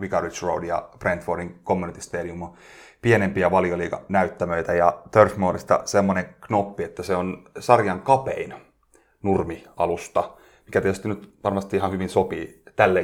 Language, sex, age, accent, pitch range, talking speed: Finnish, male, 30-49, native, 90-100 Hz, 125 wpm